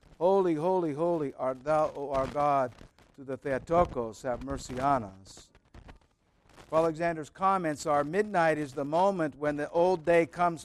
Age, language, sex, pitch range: 60-79, English, male, 130-175 Hz